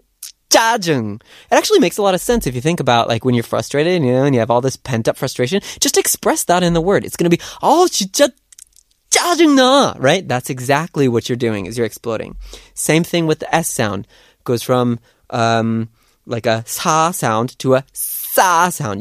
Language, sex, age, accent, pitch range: Korean, male, 30-49, American, 120-180 Hz